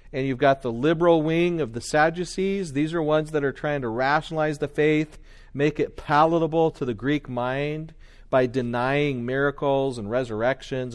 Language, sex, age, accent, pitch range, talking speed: English, male, 40-59, American, 125-155 Hz, 170 wpm